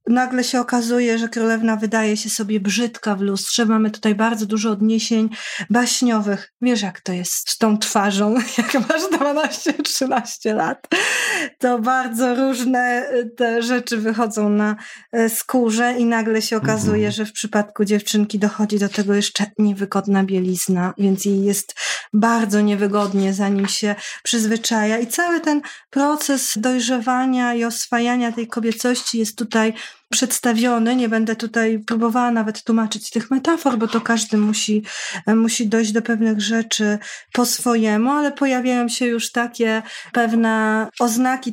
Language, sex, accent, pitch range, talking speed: Polish, female, native, 215-245 Hz, 140 wpm